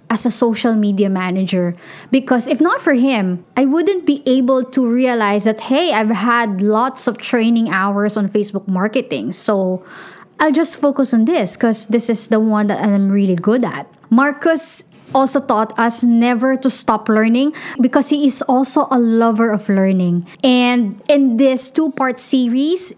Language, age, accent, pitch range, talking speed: English, 20-39, Filipino, 220-270 Hz, 165 wpm